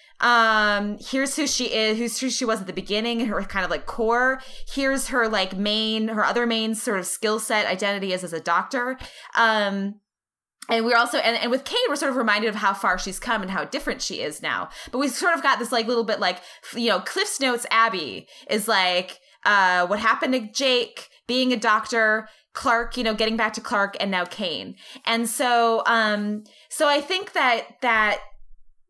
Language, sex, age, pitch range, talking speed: English, female, 20-39, 190-245 Hz, 205 wpm